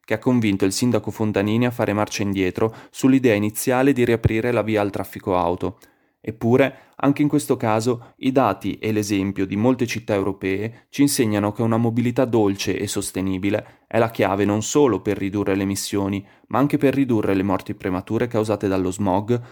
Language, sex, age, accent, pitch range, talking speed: Italian, male, 20-39, native, 105-125 Hz, 180 wpm